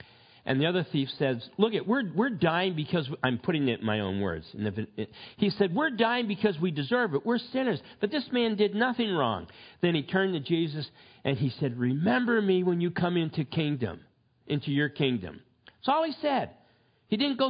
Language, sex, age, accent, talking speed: English, male, 50-69, American, 205 wpm